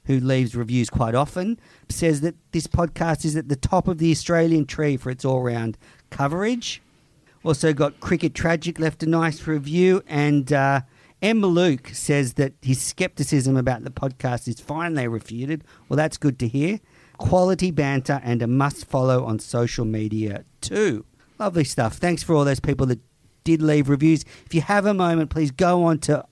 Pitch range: 125-165 Hz